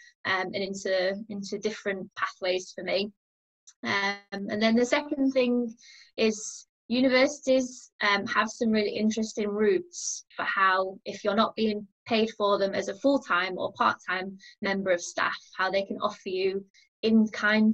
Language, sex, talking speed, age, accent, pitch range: English, female, 150 wpm, 20-39, British, 195-225 Hz